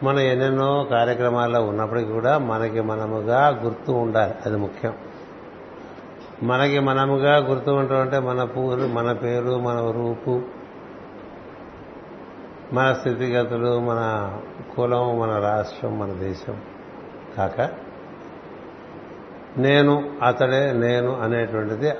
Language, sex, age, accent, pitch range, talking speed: Telugu, male, 60-79, native, 115-135 Hz, 95 wpm